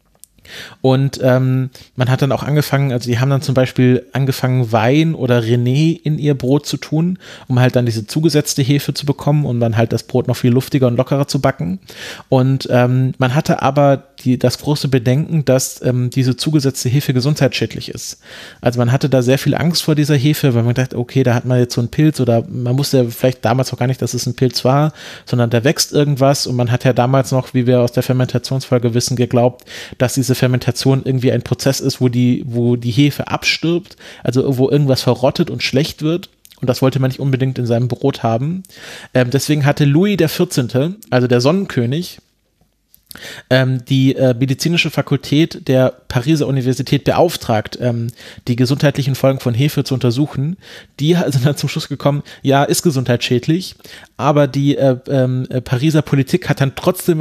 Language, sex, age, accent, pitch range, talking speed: English, male, 30-49, German, 125-145 Hz, 190 wpm